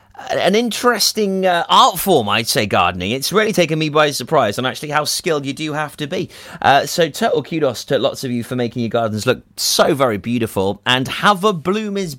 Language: English